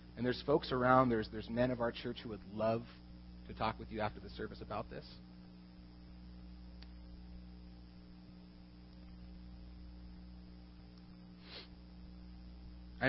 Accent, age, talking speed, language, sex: American, 30-49, 105 wpm, English, male